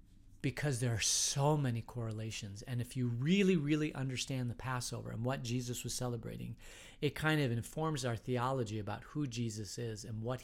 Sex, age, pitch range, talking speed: male, 40-59, 105-130 Hz, 180 wpm